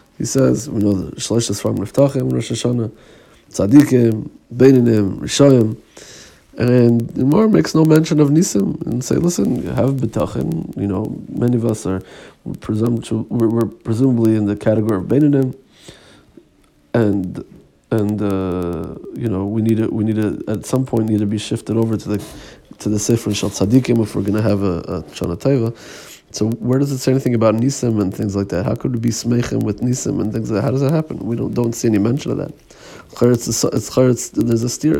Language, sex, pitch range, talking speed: Hebrew, male, 105-125 Hz, 190 wpm